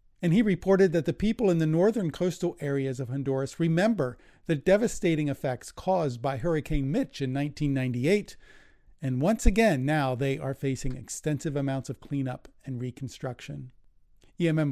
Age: 50-69